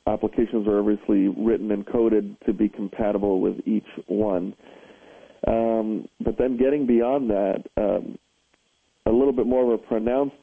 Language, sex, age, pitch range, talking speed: English, male, 40-59, 105-115 Hz, 150 wpm